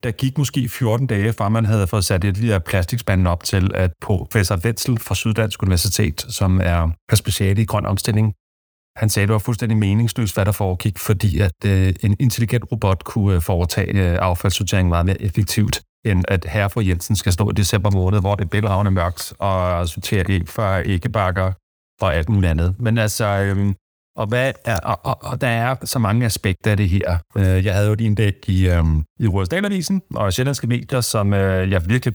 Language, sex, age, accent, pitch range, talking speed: English, male, 30-49, Danish, 95-110 Hz, 190 wpm